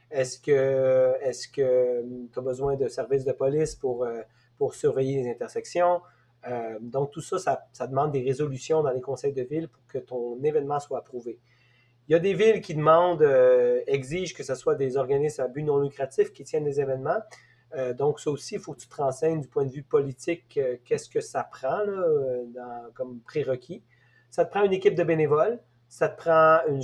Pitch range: 130-165 Hz